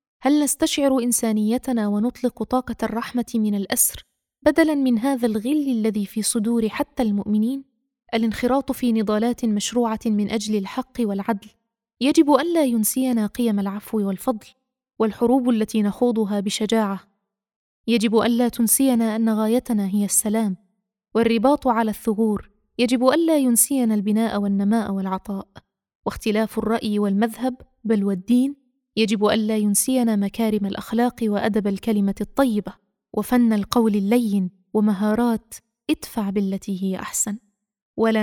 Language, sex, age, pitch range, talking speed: Arabic, female, 20-39, 205-245 Hz, 115 wpm